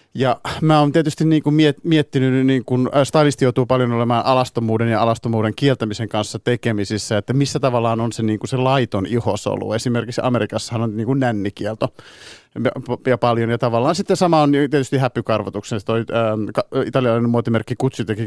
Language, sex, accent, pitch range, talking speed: Finnish, male, native, 110-130 Hz, 150 wpm